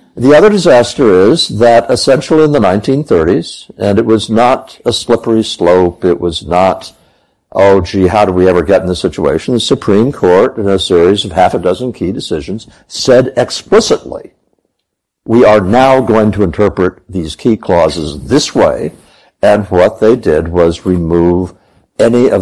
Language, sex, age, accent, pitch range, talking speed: English, male, 60-79, American, 85-115 Hz, 165 wpm